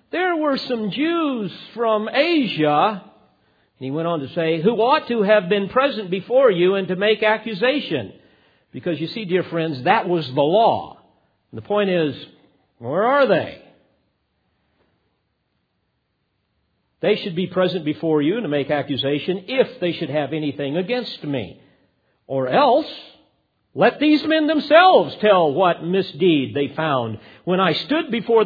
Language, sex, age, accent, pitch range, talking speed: English, male, 50-69, American, 155-225 Hz, 150 wpm